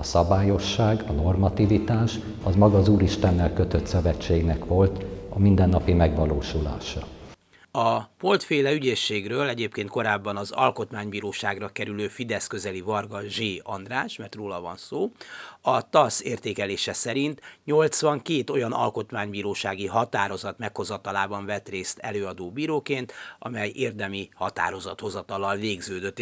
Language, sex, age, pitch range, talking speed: Hungarian, male, 60-79, 95-125 Hz, 110 wpm